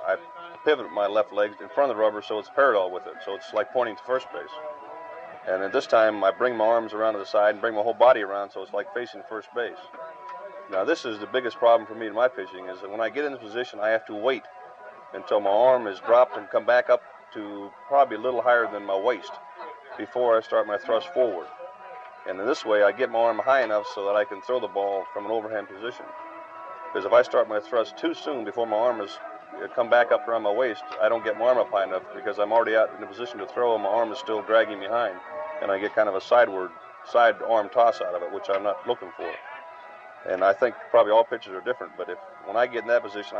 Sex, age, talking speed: male, 40-59, 260 wpm